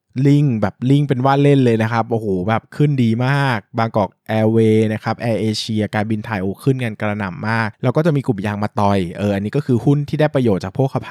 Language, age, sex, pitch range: Thai, 20-39, male, 100-130 Hz